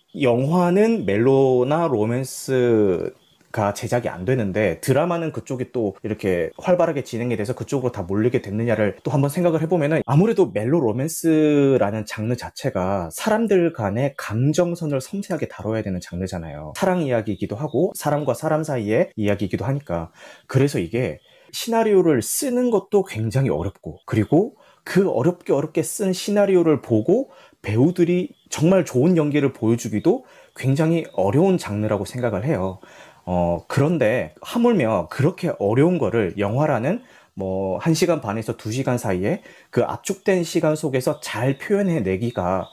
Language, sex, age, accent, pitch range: Korean, male, 30-49, native, 110-170 Hz